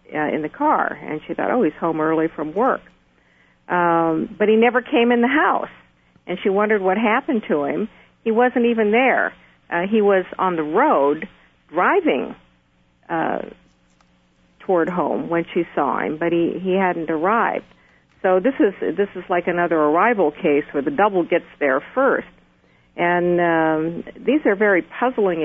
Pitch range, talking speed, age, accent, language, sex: 155-205 Hz, 165 wpm, 50-69, American, English, female